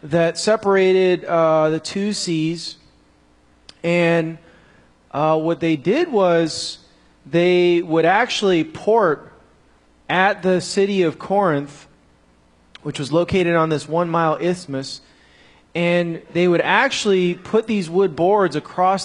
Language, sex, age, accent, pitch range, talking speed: English, male, 30-49, American, 140-185 Hz, 115 wpm